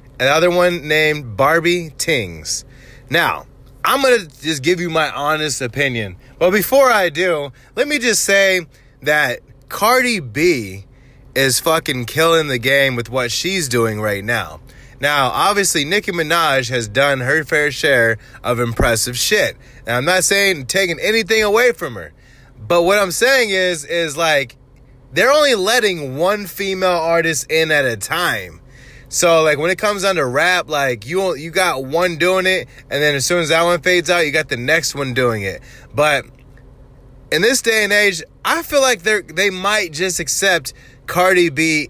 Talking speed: 175 wpm